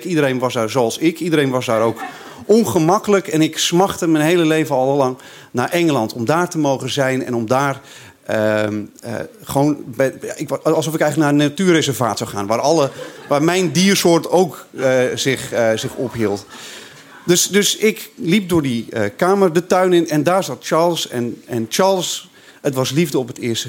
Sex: male